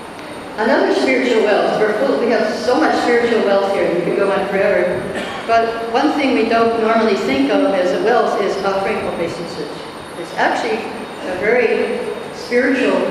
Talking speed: 160 wpm